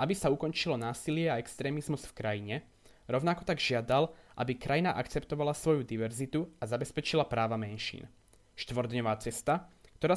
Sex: male